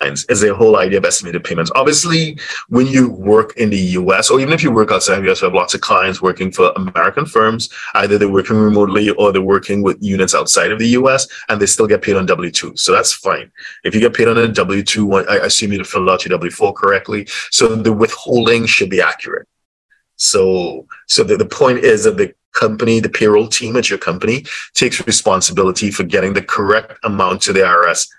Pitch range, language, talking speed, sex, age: 100-120 Hz, English, 215 wpm, male, 30-49